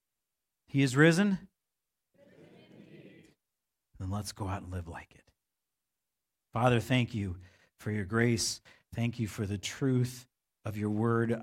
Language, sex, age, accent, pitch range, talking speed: English, male, 50-69, American, 110-135 Hz, 130 wpm